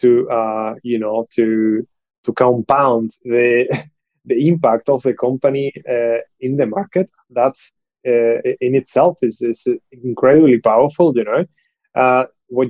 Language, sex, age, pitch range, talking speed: Spanish, male, 20-39, 120-145 Hz, 135 wpm